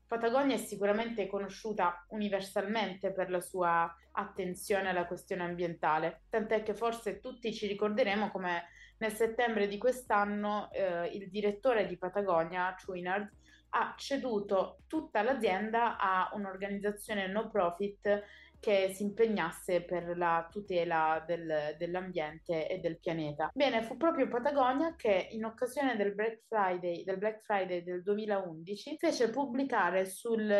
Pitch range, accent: 185-230 Hz, native